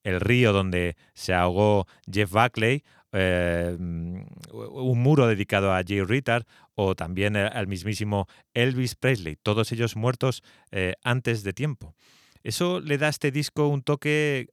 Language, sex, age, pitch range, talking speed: Spanish, male, 30-49, 105-130 Hz, 145 wpm